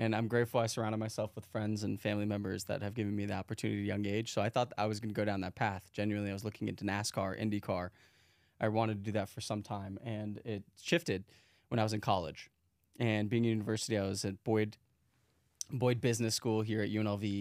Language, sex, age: English, male, 20-39